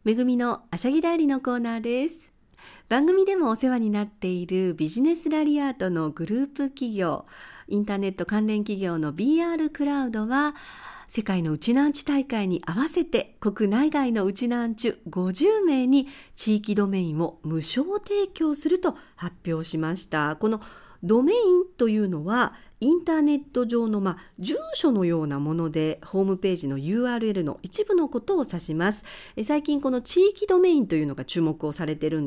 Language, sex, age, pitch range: Japanese, female, 50-69, 175-275 Hz